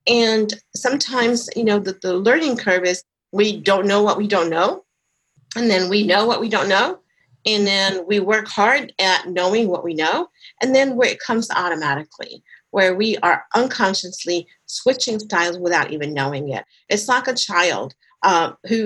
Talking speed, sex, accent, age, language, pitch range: 180 wpm, female, American, 50-69, English, 175-235 Hz